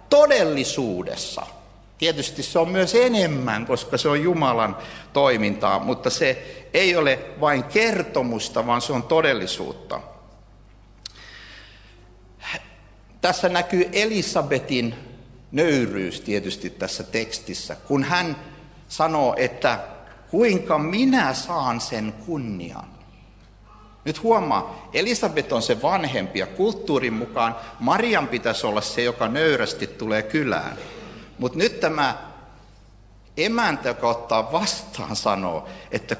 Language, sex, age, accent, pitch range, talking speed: Finnish, male, 60-79, native, 105-165 Hz, 105 wpm